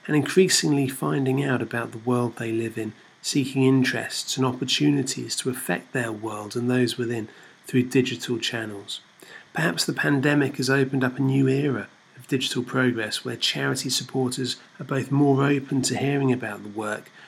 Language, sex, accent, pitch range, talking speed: English, male, British, 125-140 Hz, 165 wpm